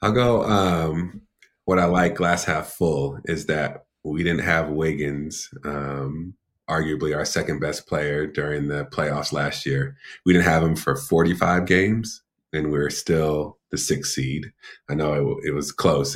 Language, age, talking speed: English, 30-49, 170 wpm